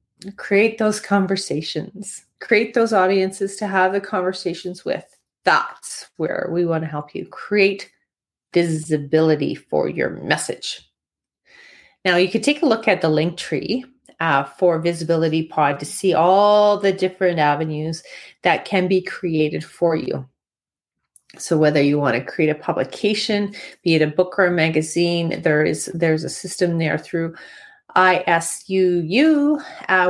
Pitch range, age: 170-225 Hz, 30-49